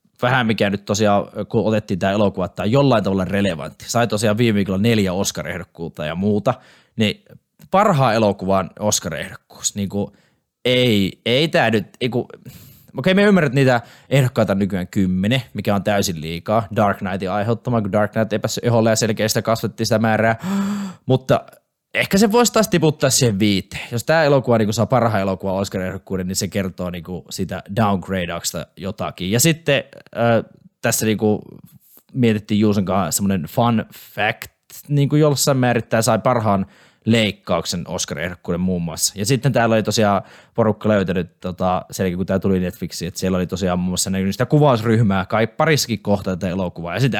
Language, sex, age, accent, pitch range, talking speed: Finnish, male, 20-39, native, 95-120 Hz, 155 wpm